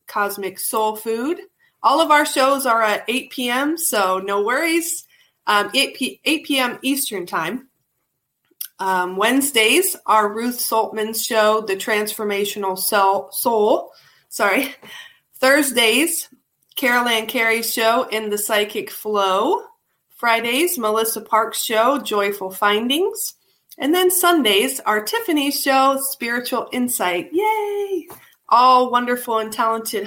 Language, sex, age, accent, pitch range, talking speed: English, female, 30-49, American, 215-300 Hz, 120 wpm